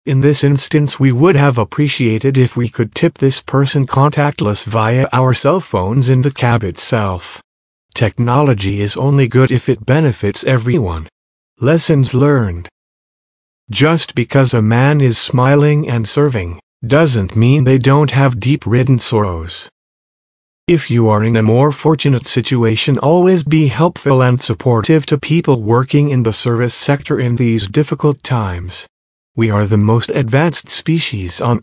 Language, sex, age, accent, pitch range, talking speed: English, male, 50-69, American, 110-140 Hz, 150 wpm